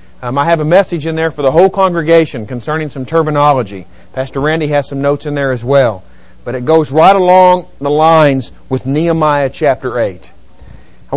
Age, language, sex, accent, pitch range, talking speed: 40-59, English, male, American, 130-185 Hz, 190 wpm